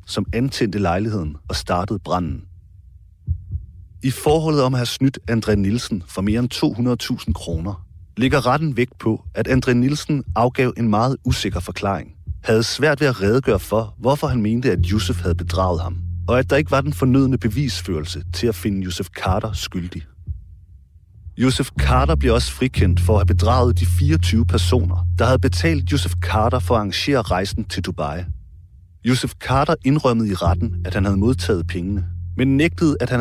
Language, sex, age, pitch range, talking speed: Danish, male, 40-59, 90-120 Hz, 175 wpm